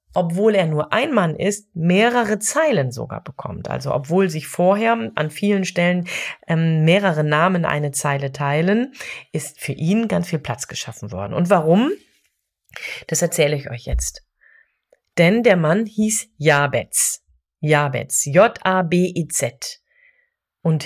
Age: 30-49